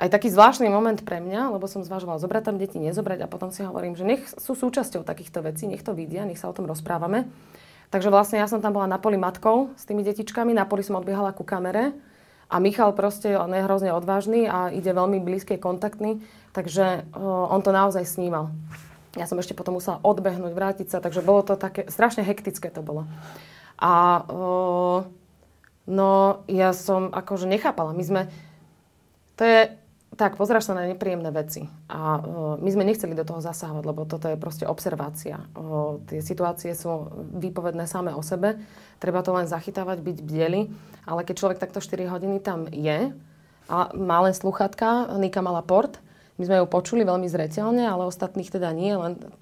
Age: 20-39